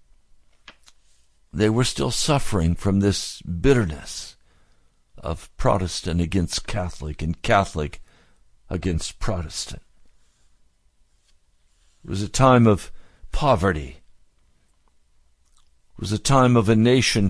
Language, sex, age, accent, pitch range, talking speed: English, male, 60-79, American, 80-135 Hz, 95 wpm